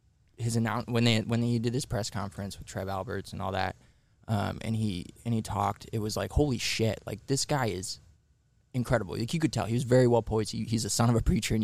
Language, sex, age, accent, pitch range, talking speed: English, male, 20-39, American, 100-120 Hz, 255 wpm